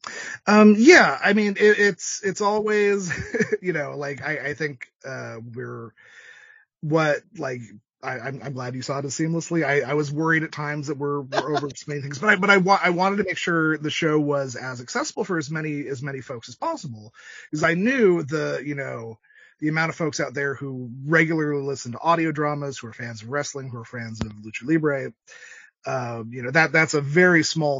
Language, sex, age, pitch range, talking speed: English, male, 30-49, 120-155 Hz, 210 wpm